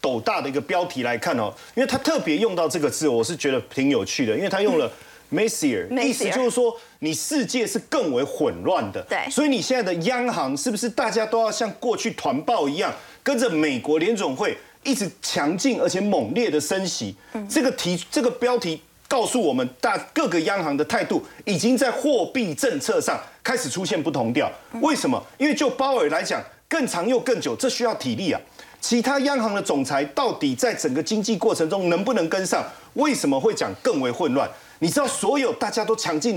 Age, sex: 30-49, male